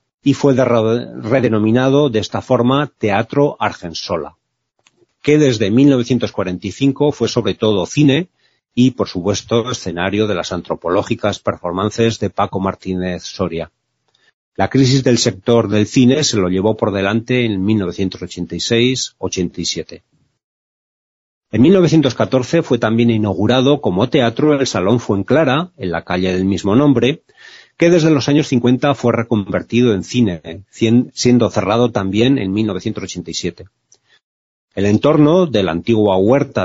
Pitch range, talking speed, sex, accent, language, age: 100-135 Hz, 125 wpm, male, Spanish, Spanish, 40-59